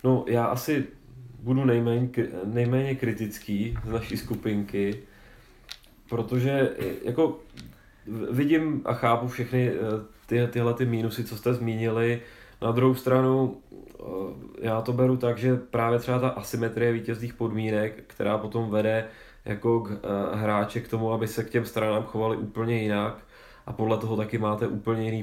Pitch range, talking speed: 105-120 Hz, 145 wpm